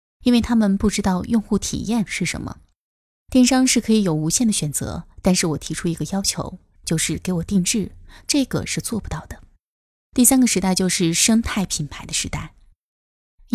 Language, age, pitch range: Chinese, 20-39, 165-220 Hz